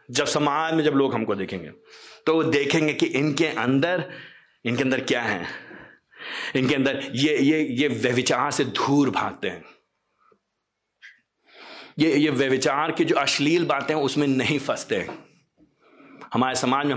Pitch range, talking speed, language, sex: 130-170 Hz, 150 wpm, Hindi, male